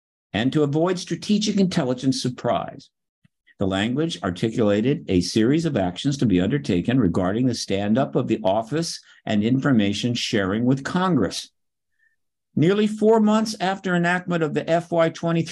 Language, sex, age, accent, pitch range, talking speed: English, male, 60-79, American, 130-170 Hz, 140 wpm